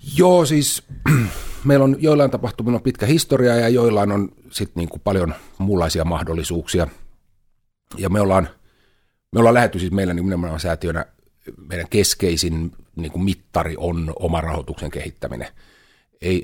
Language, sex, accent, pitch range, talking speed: Finnish, male, native, 80-100 Hz, 135 wpm